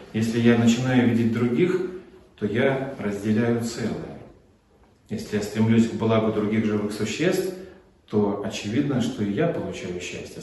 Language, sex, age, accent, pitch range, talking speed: Russian, male, 40-59, native, 105-135 Hz, 140 wpm